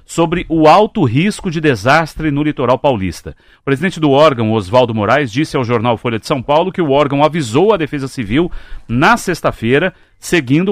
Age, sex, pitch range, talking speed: 40-59, male, 135-170 Hz, 180 wpm